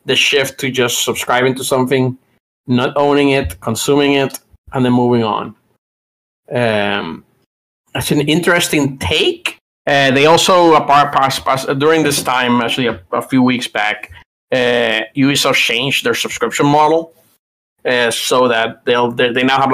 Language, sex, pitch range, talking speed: English, male, 125-145 Hz, 145 wpm